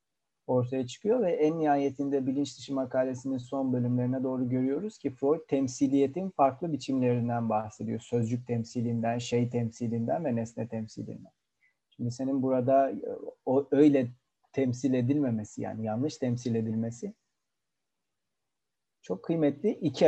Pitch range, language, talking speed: 120-140 Hz, Turkish, 110 wpm